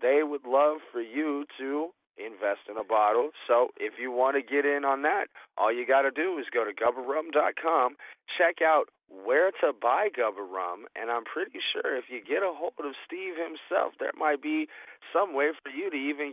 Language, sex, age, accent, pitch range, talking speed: English, male, 30-49, American, 125-155 Hz, 200 wpm